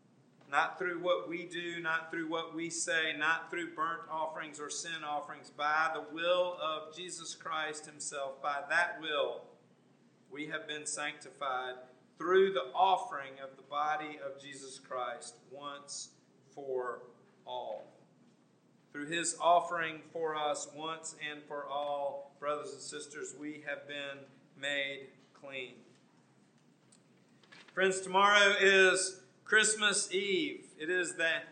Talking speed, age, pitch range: 130 wpm, 50-69, 150-180 Hz